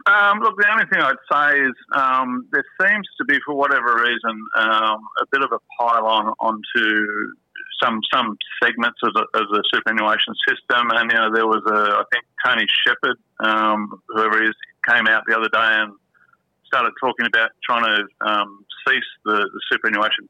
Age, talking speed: 50-69, 185 wpm